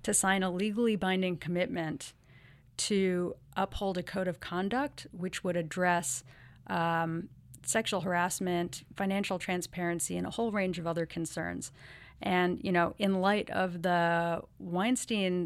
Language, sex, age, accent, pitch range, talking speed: English, female, 40-59, American, 170-200 Hz, 135 wpm